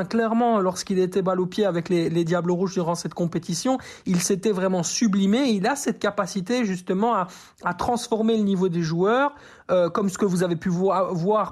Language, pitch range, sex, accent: French, 175-215 Hz, male, French